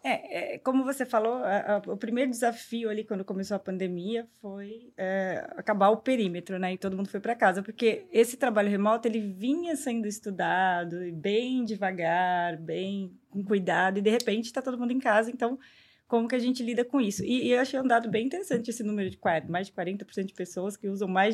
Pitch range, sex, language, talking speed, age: 195-240 Hz, female, Portuguese, 215 wpm, 20-39